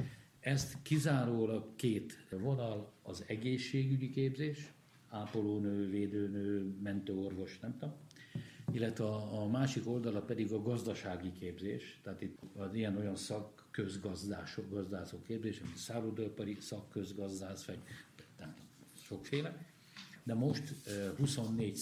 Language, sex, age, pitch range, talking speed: Hungarian, male, 60-79, 100-120 Hz, 100 wpm